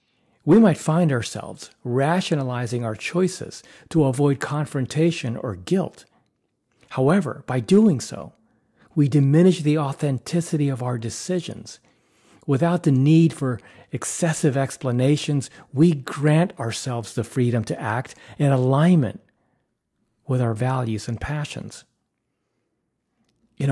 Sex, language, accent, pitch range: male, English, American, 125-155 Hz